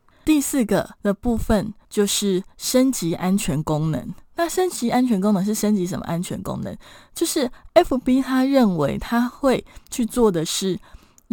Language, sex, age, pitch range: Chinese, female, 20-39, 185-255 Hz